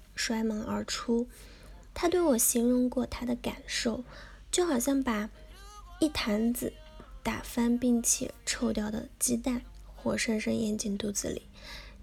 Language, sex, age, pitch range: Chinese, female, 10-29, 225-270 Hz